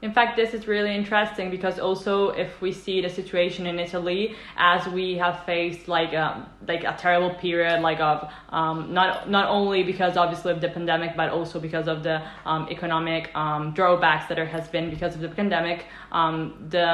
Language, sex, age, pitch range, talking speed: Italian, female, 10-29, 165-185 Hz, 195 wpm